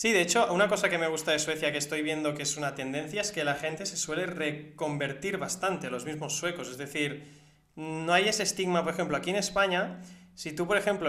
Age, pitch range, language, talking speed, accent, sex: 20-39, 145-180 Hz, Spanish, 235 wpm, Spanish, male